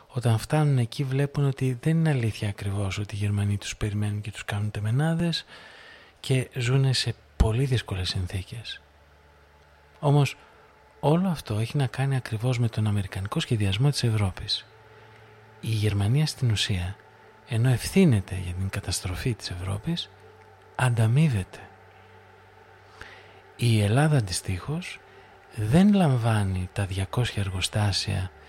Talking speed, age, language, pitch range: 120 wpm, 50-69, Greek, 100-130 Hz